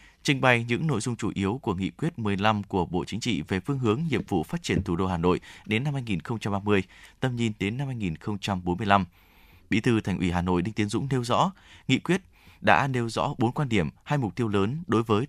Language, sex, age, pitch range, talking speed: Vietnamese, male, 20-39, 95-125 Hz, 230 wpm